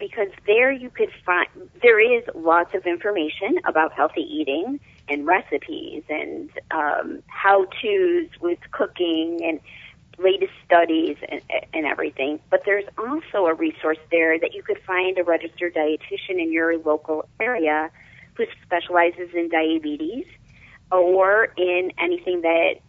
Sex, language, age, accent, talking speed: female, English, 40-59, American, 135 wpm